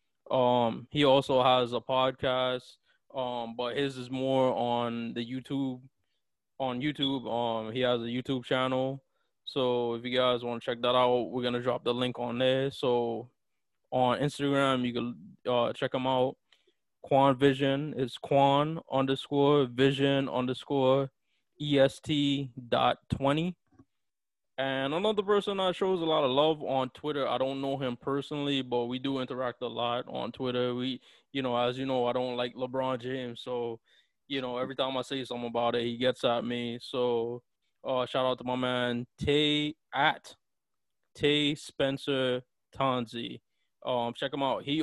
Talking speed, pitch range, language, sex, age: 165 wpm, 120-140 Hz, English, male, 20-39